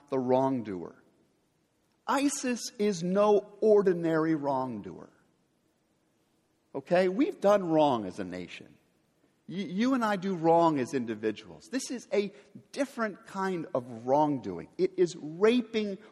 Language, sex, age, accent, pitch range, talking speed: English, male, 50-69, American, 150-215 Hz, 115 wpm